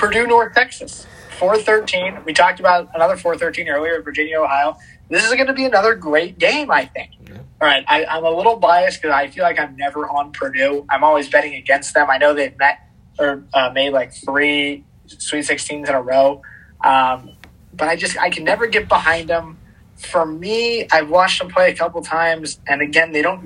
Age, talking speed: 20-39, 205 wpm